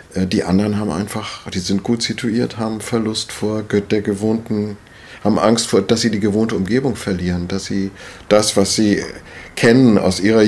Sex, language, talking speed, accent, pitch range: male, German, 170 wpm, German, 95-115 Hz